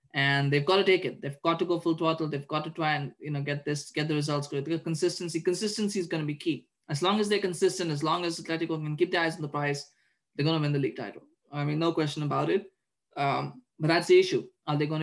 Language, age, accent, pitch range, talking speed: English, 20-39, Indian, 145-165 Hz, 275 wpm